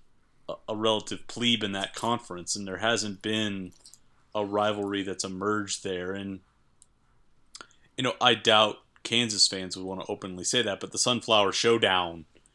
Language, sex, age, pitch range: English, male, 30-49, 95-115 Hz